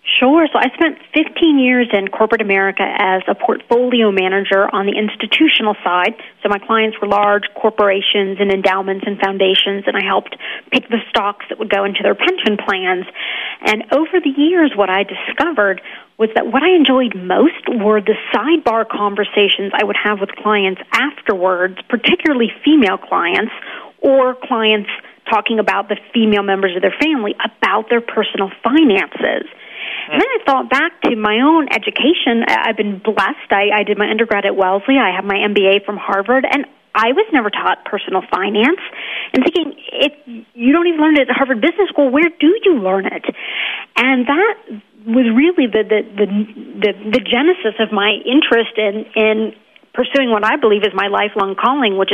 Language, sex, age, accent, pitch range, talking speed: English, female, 40-59, American, 205-270 Hz, 175 wpm